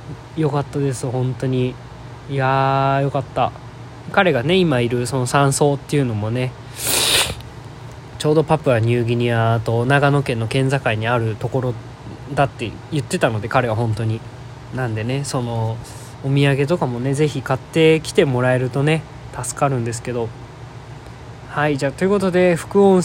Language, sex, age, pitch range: Japanese, male, 20-39, 120-145 Hz